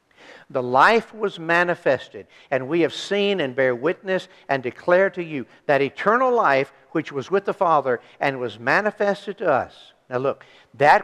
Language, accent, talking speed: English, American, 170 wpm